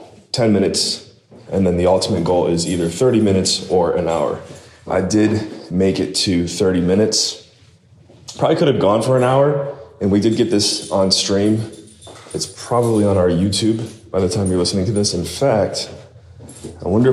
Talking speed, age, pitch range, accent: 180 wpm, 20-39, 95-125 Hz, American